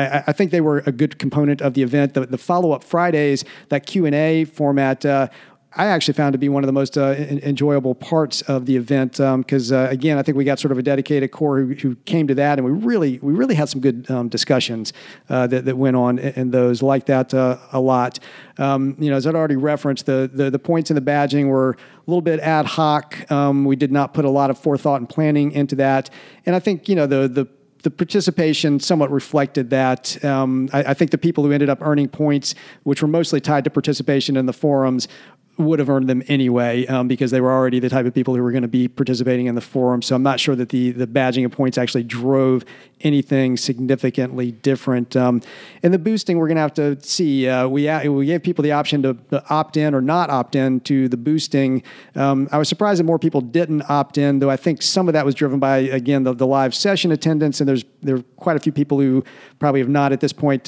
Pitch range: 130-150 Hz